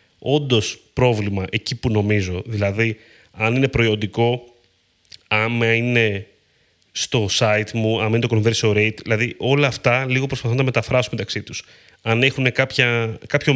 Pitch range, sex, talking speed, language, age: 110-150 Hz, male, 145 wpm, Greek, 30-49